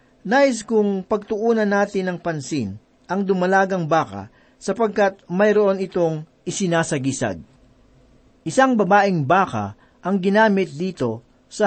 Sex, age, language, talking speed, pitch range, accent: male, 50-69, Filipino, 110 wpm, 145-200 Hz, native